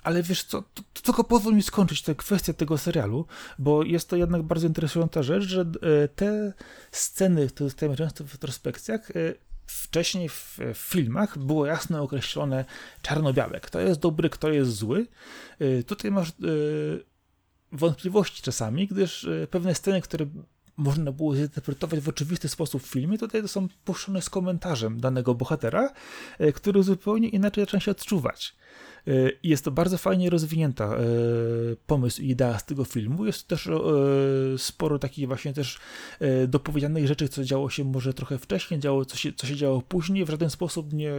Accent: native